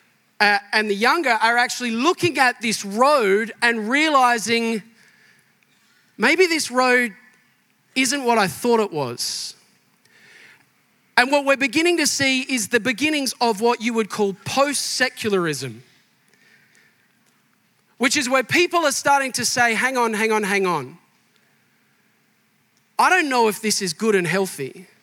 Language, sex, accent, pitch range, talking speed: English, male, Australian, 200-255 Hz, 140 wpm